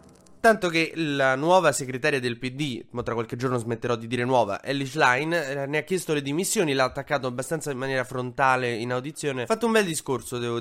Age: 20-39